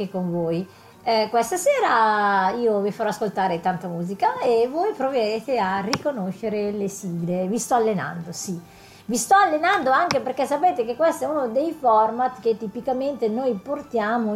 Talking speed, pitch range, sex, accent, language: 160 wpm, 200-270 Hz, female, native, Italian